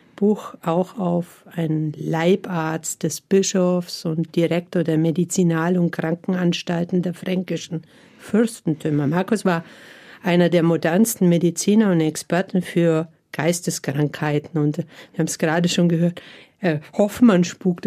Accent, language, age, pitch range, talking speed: German, German, 50-69, 170-195 Hz, 115 wpm